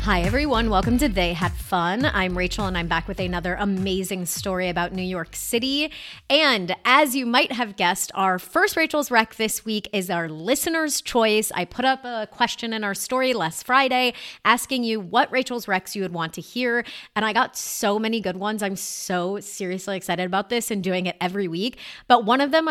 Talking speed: 205 wpm